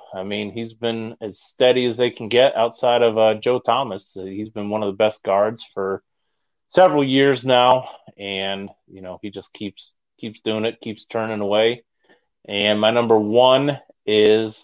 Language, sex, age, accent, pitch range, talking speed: English, male, 30-49, American, 105-125 Hz, 175 wpm